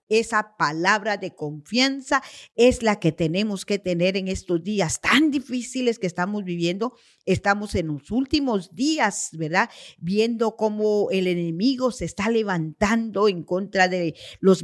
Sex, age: female, 50-69